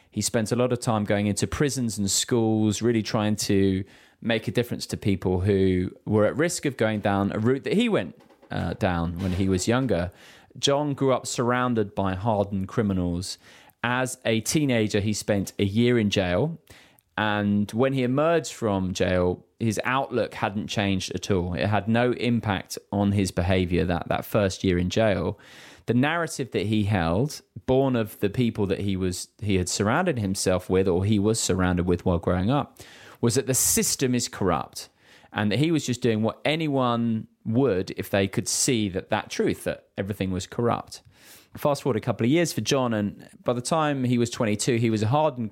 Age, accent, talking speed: 20-39, British, 195 wpm